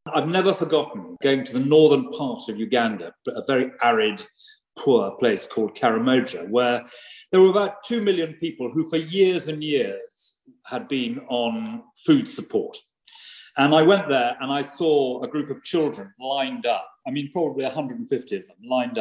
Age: 40-59